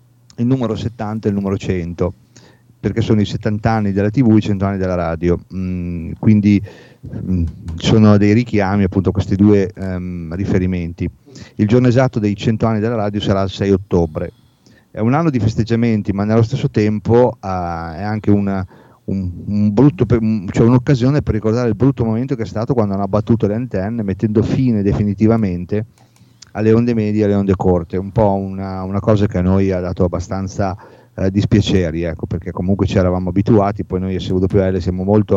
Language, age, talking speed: Italian, 40-59, 190 wpm